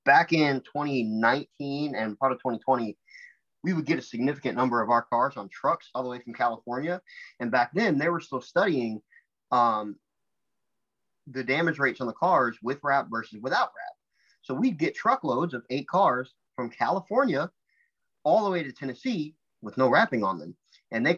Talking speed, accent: 180 wpm, American